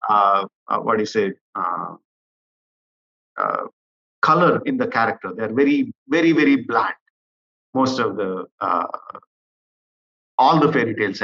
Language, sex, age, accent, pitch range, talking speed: English, male, 50-69, Indian, 110-165 Hz, 115 wpm